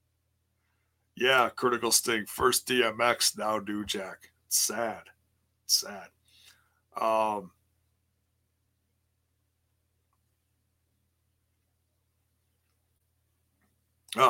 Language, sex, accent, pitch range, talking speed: English, male, American, 95-125 Hz, 45 wpm